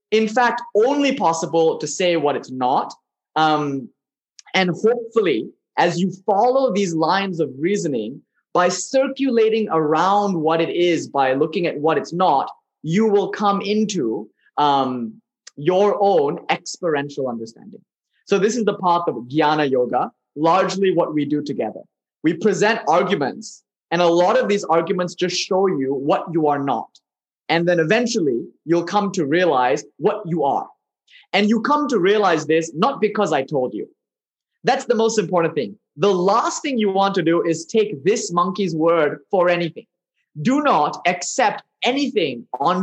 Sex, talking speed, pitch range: male, 160 wpm, 165-220 Hz